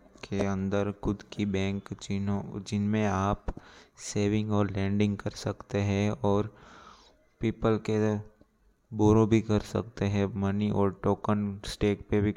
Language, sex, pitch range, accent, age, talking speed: Hindi, male, 100-105 Hz, native, 20-39, 135 wpm